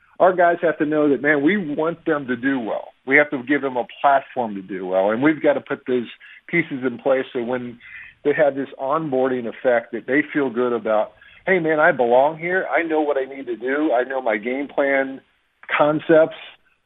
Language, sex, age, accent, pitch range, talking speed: English, male, 50-69, American, 120-145 Hz, 220 wpm